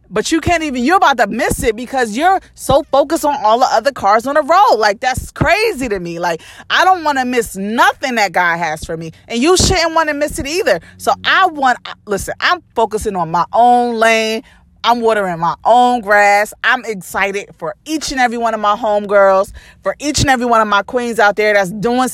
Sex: female